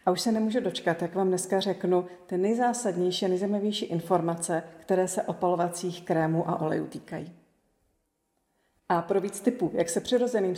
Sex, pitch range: female, 180-230 Hz